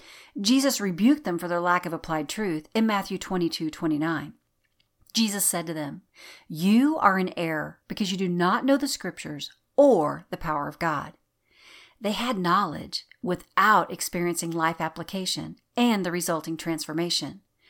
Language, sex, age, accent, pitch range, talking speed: English, female, 50-69, American, 170-245 Hz, 150 wpm